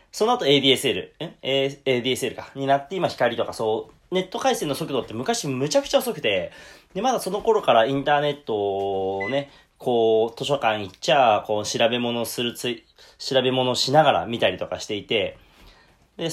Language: Japanese